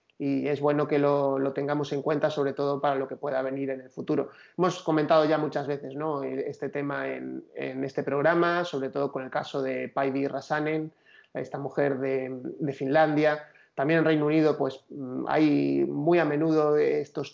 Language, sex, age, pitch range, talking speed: Spanish, male, 30-49, 140-160 Hz, 185 wpm